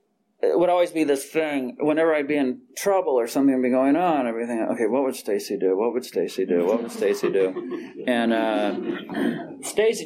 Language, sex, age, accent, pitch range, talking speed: English, male, 40-59, American, 120-160 Hz, 205 wpm